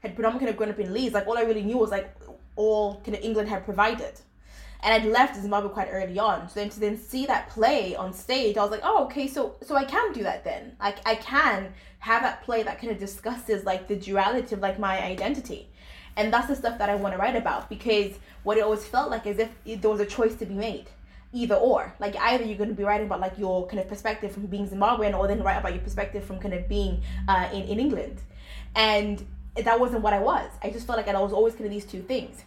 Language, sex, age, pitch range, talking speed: English, female, 20-39, 200-225 Hz, 260 wpm